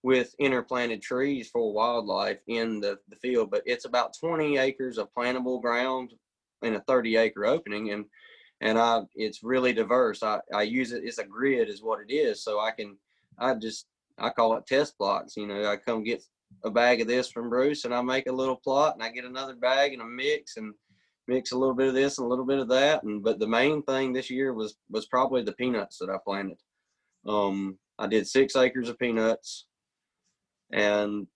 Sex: male